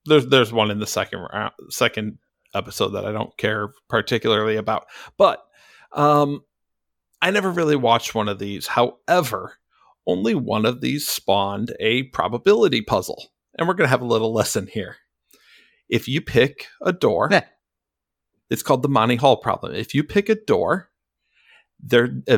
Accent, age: American, 50-69